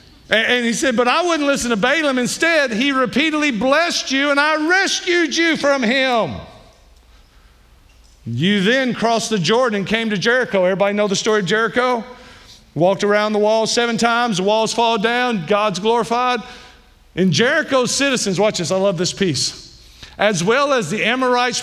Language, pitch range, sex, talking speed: English, 190-235 Hz, male, 170 wpm